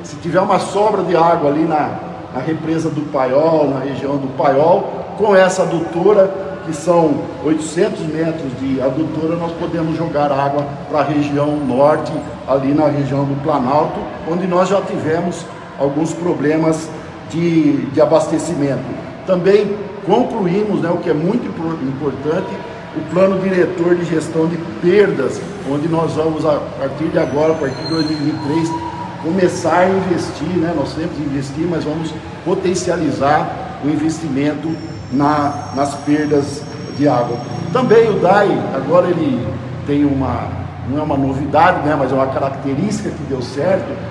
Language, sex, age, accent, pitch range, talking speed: Portuguese, male, 50-69, Brazilian, 145-175 Hz, 150 wpm